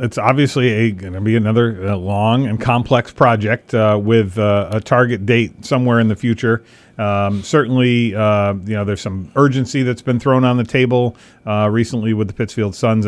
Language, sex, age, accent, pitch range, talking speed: English, male, 40-59, American, 105-120 Hz, 185 wpm